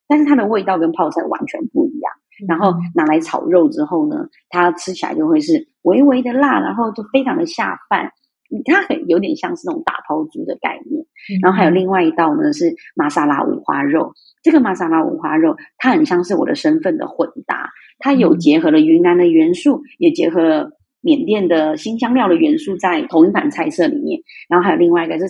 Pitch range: 190-315 Hz